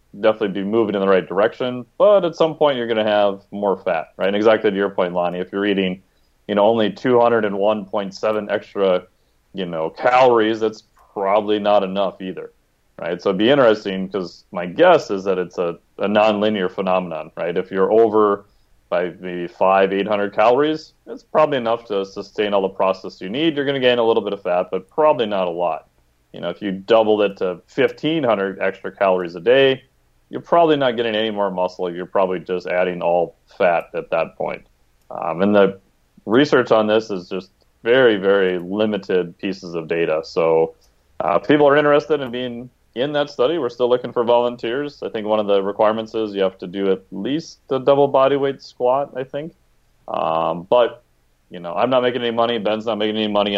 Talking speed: 200 wpm